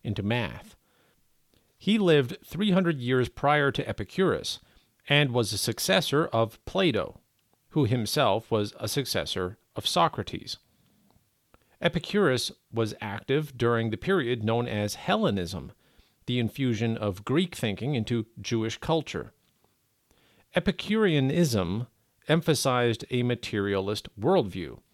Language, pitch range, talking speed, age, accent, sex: English, 105-150 Hz, 105 wpm, 40-59, American, male